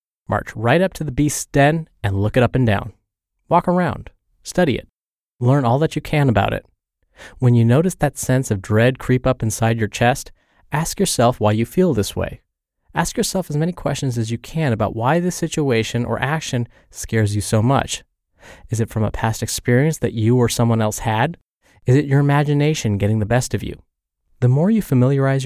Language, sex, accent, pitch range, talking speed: English, male, American, 115-150 Hz, 205 wpm